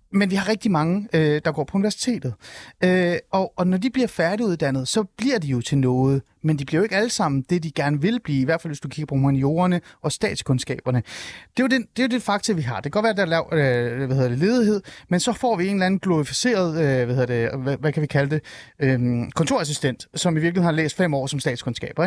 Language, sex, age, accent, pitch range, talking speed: Danish, male, 30-49, native, 140-195 Hz, 235 wpm